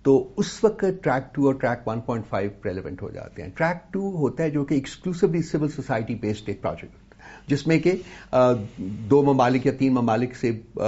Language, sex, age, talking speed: Urdu, male, 50-69, 175 wpm